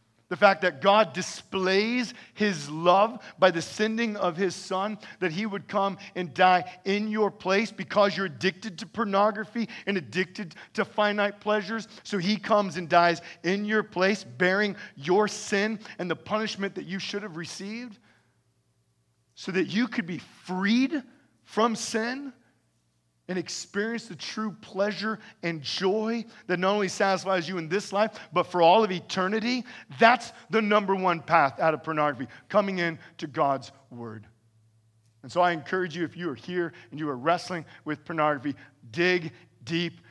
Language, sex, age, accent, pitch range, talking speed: English, male, 40-59, American, 155-205 Hz, 165 wpm